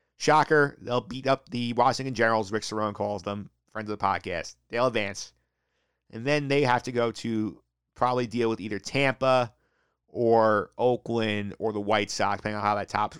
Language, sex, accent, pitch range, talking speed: English, male, American, 100-130 Hz, 180 wpm